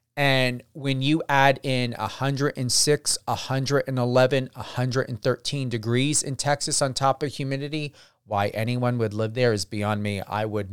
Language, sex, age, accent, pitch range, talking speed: English, male, 40-59, American, 115-150 Hz, 140 wpm